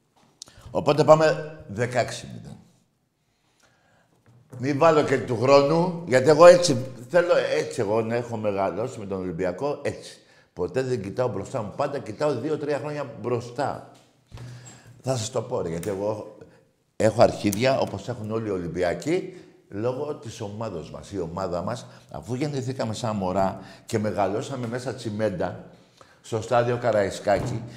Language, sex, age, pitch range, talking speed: Greek, male, 60-79, 100-140 Hz, 130 wpm